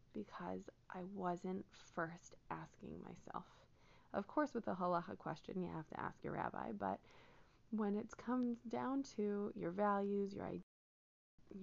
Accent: American